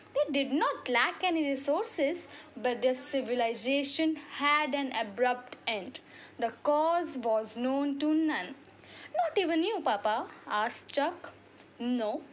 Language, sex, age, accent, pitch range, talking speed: Hindi, female, 20-39, native, 250-360 Hz, 125 wpm